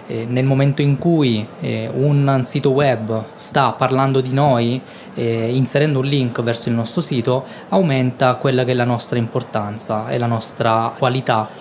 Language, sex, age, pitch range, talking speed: Italian, male, 20-39, 120-150 Hz, 165 wpm